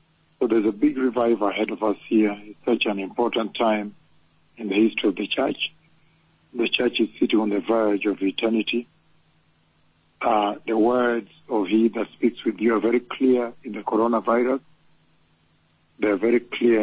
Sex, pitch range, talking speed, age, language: male, 95-120 Hz, 170 wpm, 60-79, English